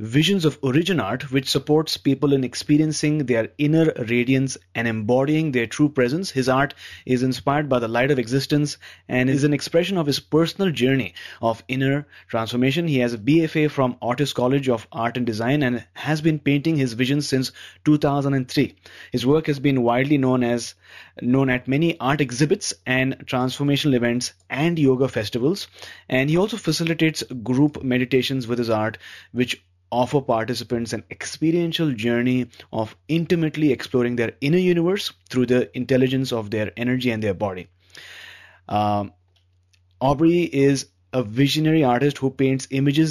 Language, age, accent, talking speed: English, 30-49, Indian, 155 wpm